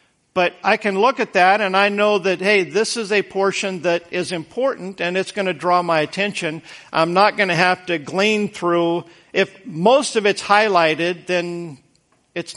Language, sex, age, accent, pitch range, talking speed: English, male, 50-69, American, 150-190 Hz, 190 wpm